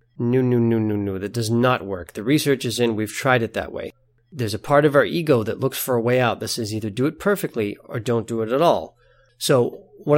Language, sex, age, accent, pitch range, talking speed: English, male, 30-49, American, 115-150 Hz, 260 wpm